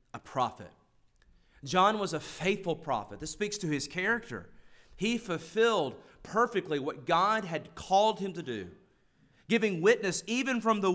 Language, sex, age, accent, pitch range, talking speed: English, male, 30-49, American, 135-185 Hz, 150 wpm